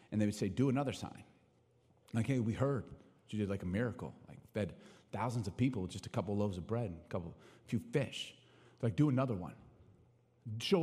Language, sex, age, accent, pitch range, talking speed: English, male, 30-49, American, 100-135 Hz, 220 wpm